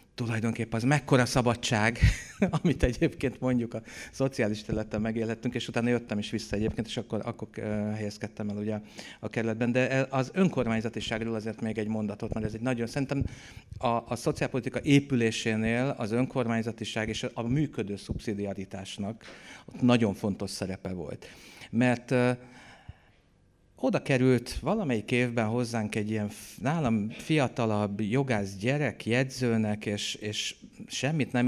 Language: Hungarian